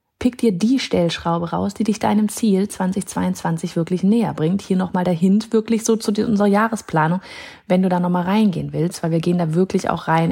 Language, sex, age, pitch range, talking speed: German, female, 30-49, 180-235 Hz, 205 wpm